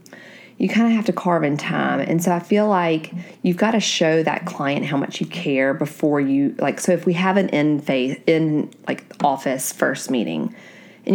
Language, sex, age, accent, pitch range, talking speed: English, female, 30-49, American, 150-190 Hz, 205 wpm